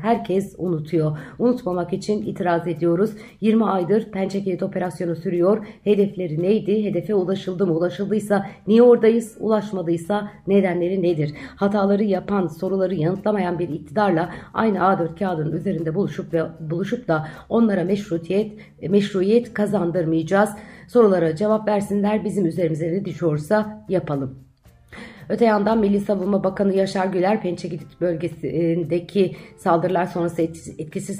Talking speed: 120 wpm